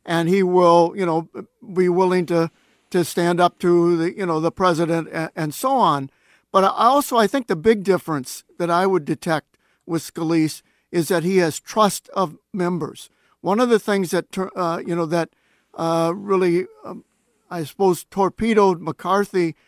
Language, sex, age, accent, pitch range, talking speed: English, male, 50-69, American, 170-200 Hz, 175 wpm